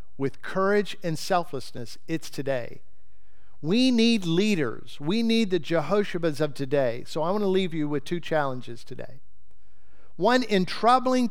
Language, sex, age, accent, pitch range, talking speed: English, male, 50-69, American, 140-215 Hz, 150 wpm